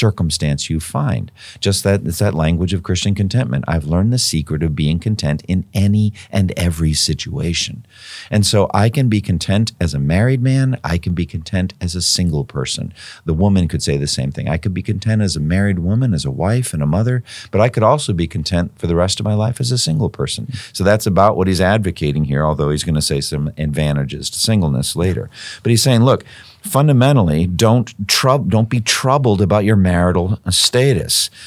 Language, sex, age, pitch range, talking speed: English, male, 50-69, 80-105 Hz, 210 wpm